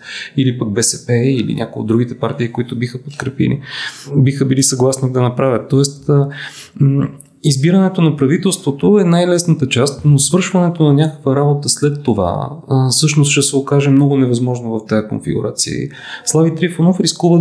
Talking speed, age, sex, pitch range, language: 145 wpm, 30-49, male, 130-155 Hz, Bulgarian